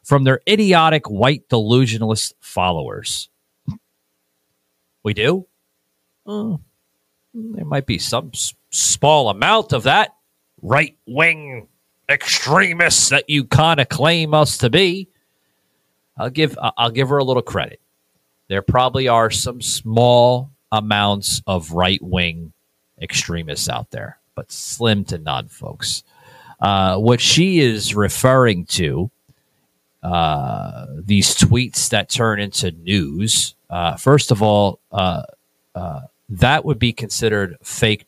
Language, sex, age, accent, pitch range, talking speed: English, male, 40-59, American, 90-130 Hz, 125 wpm